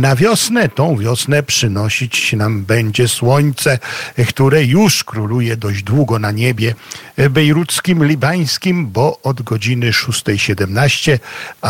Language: Polish